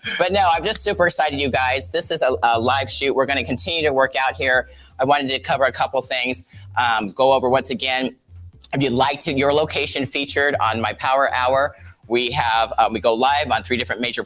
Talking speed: 230 wpm